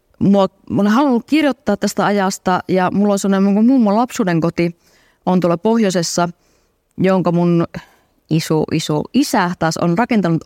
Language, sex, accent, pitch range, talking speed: Finnish, female, native, 165-205 Hz, 130 wpm